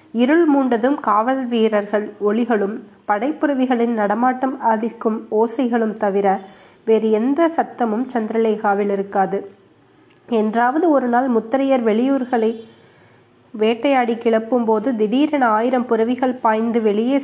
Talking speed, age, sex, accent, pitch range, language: 95 wpm, 20-39, female, native, 210-250 Hz, Tamil